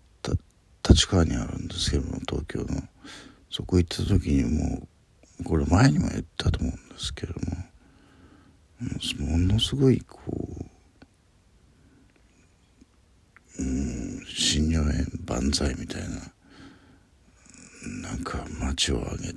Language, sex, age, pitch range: Japanese, male, 60-79, 80-95 Hz